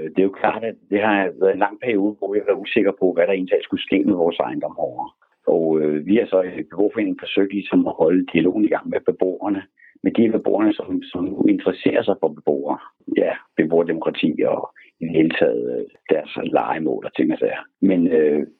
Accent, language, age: native, Danish, 60-79